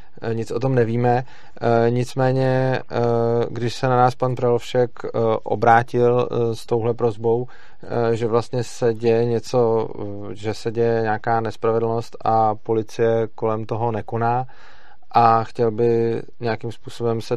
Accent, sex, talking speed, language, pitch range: native, male, 125 wpm, Czech, 110-120 Hz